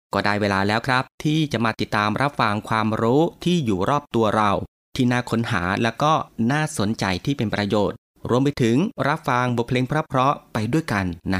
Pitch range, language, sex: 105-140 Hz, Thai, male